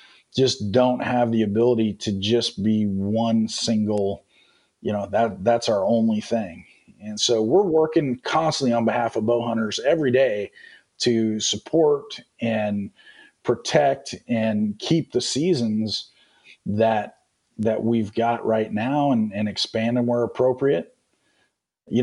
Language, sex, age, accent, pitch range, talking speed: English, male, 40-59, American, 110-135 Hz, 135 wpm